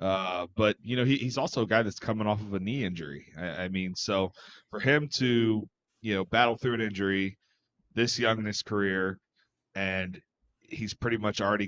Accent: American